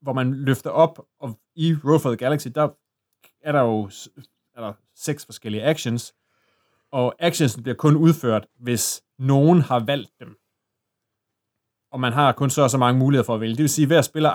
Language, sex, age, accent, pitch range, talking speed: Danish, male, 30-49, native, 115-145 Hz, 190 wpm